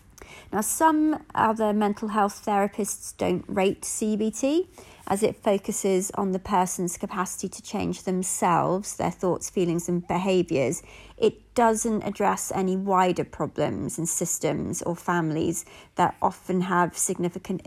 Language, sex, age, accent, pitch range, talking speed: English, female, 30-49, British, 170-205 Hz, 130 wpm